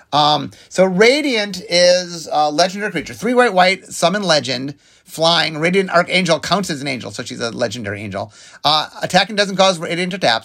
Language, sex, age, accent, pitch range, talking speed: English, male, 30-49, American, 145-195 Hz, 180 wpm